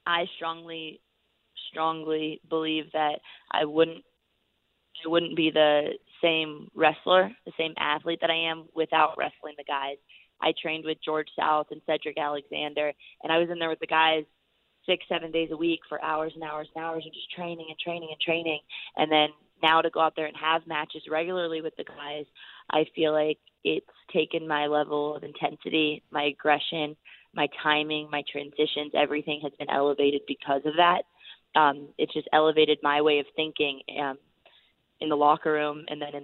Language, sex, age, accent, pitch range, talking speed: English, female, 20-39, American, 150-160 Hz, 180 wpm